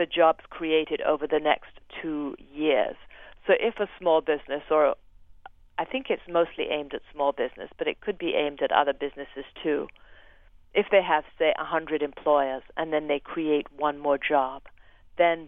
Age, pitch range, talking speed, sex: 40-59, 145-170 Hz, 180 wpm, female